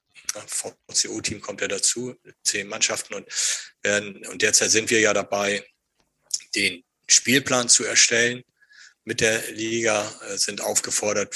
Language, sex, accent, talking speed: German, male, German, 120 wpm